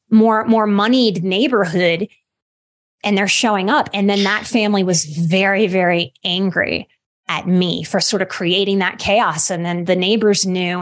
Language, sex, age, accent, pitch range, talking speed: English, female, 30-49, American, 190-255 Hz, 160 wpm